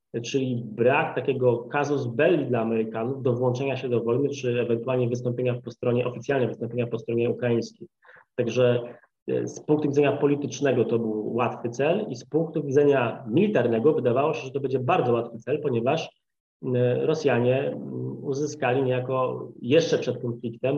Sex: male